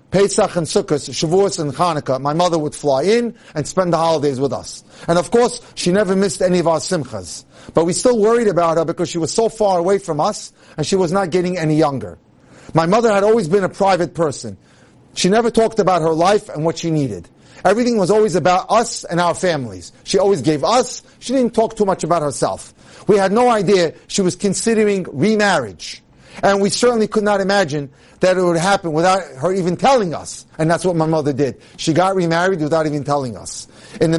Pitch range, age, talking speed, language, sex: 155-205 Hz, 40-59, 215 wpm, English, male